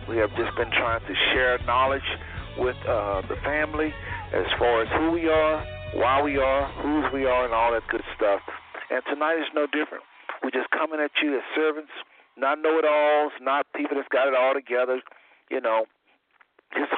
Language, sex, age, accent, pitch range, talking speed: English, male, 50-69, American, 125-165 Hz, 185 wpm